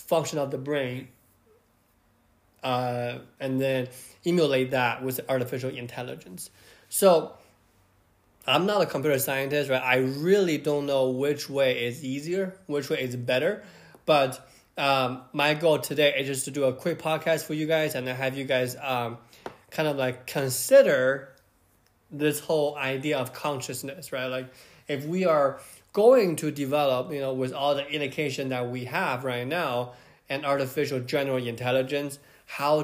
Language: English